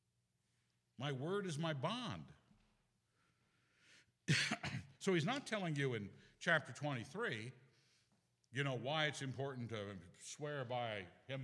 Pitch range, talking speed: 105-160 Hz, 115 wpm